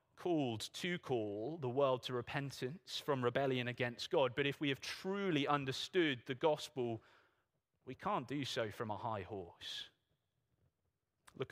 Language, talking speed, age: English, 145 wpm, 30-49